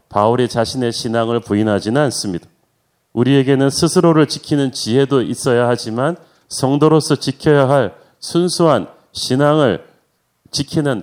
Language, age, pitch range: Korean, 40-59, 130-155 Hz